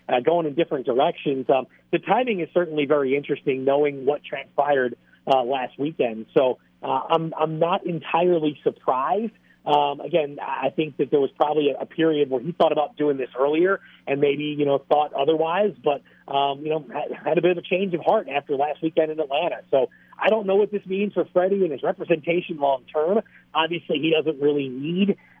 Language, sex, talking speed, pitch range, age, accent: English, male, 205 wpm, 140-170 Hz, 30-49, American